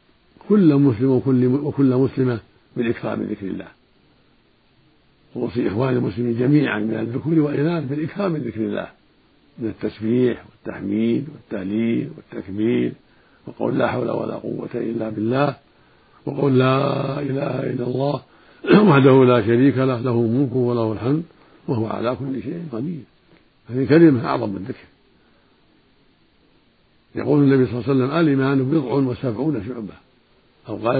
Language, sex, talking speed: Arabic, male, 135 wpm